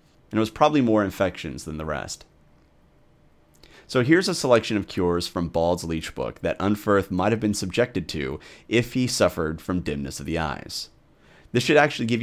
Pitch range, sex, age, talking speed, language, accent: 90-115 Hz, male, 30-49, 185 wpm, English, American